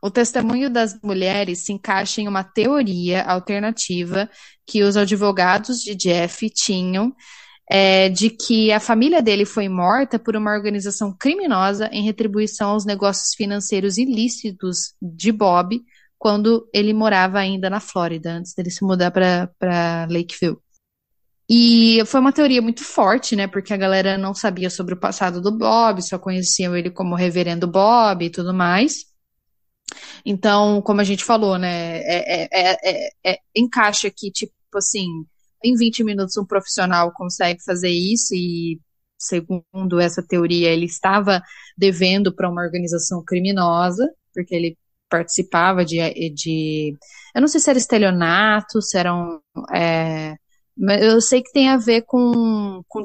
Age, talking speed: 10-29, 150 wpm